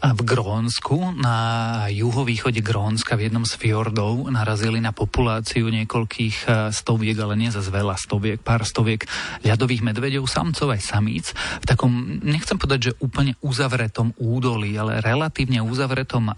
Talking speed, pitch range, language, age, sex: 135 wpm, 110-125 Hz, Slovak, 40-59, male